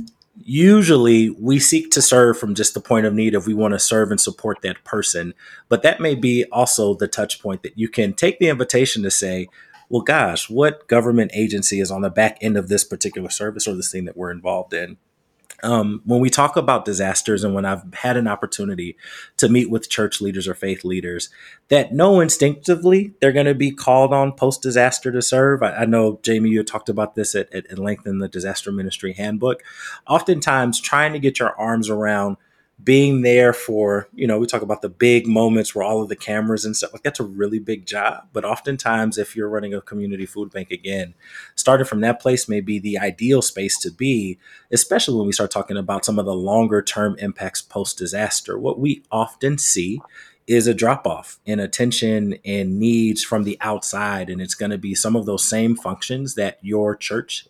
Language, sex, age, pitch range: English, male, 30-49, 100-125 Hz